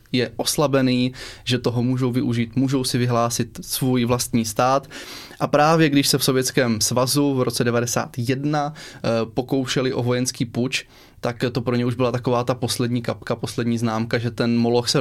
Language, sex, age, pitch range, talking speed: Czech, male, 20-39, 115-130 Hz, 170 wpm